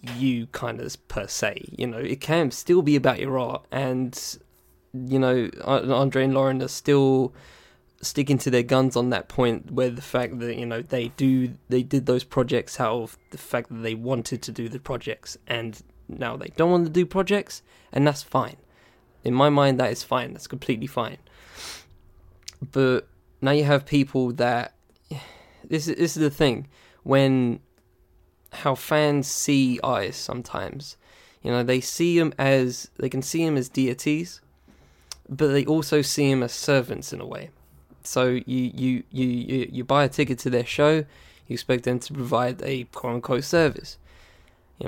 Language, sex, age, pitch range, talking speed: English, male, 10-29, 120-140 Hz, 180 wpm